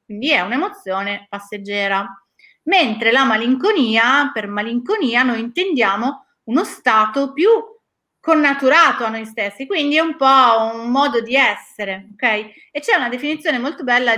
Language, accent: Italian, native